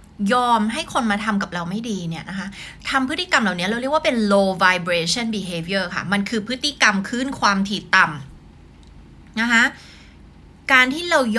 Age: 20-39